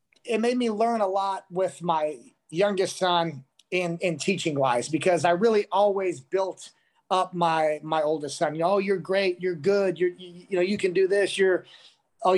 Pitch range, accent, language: 170-200 Hz, American, English